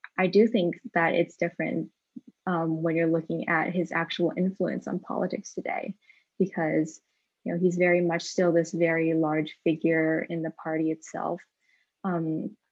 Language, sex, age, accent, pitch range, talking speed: English, female, 10-29, American, 160-180 Hz, 155 wpm